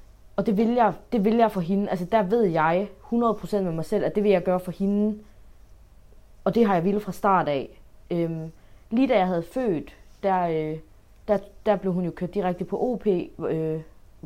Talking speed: 200 wpm